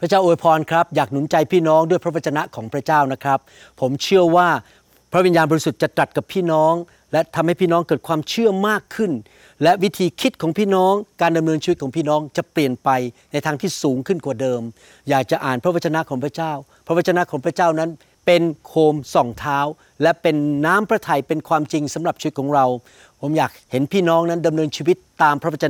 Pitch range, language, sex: 145-175 Hz, Thai, male